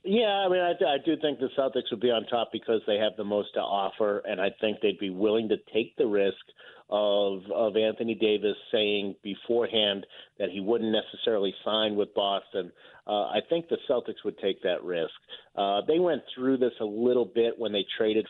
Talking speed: 205 wpm